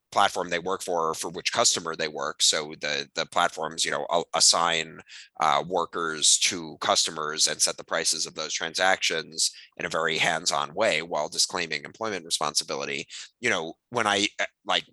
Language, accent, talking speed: English, American, 170 wpm